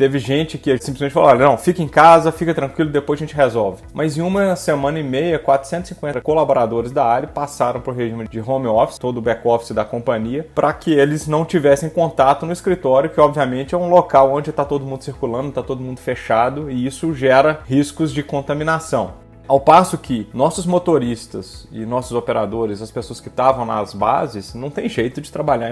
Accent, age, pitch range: Brazilian, 30-49, 130-165 Hz